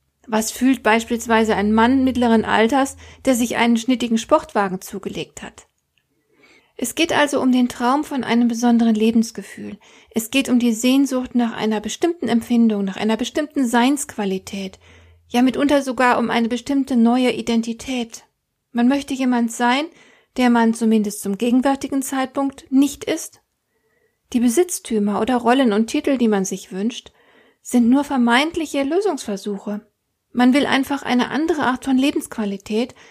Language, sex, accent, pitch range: German, female, German, 215-260 Hz